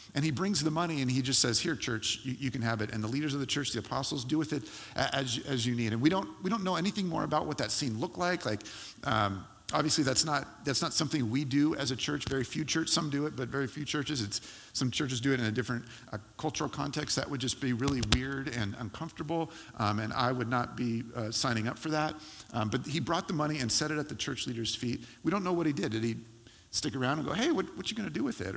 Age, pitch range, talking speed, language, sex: 50-69, 115-145 Hz, 275 wpm, English, male